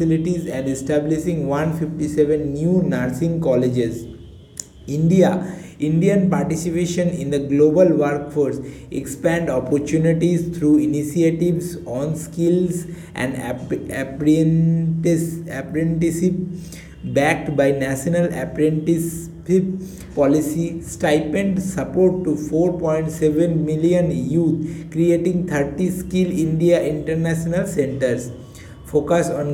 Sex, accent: male, Indian